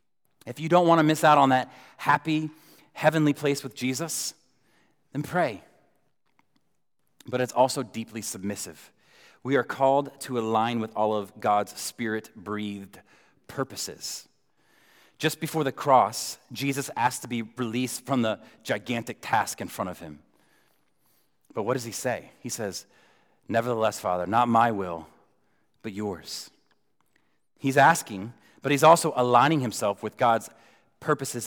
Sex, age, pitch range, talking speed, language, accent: male, 30-49, 115-155 Hz, 140 wpm, English, American